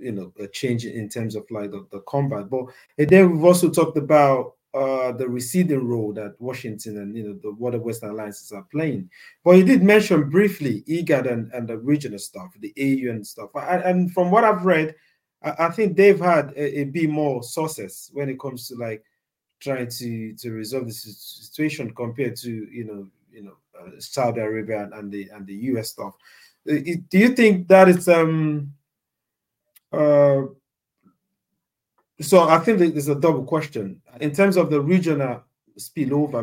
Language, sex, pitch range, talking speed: English, male, 115-155 Hz, 180 wpm